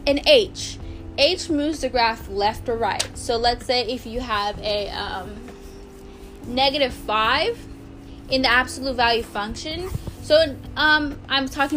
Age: 10-29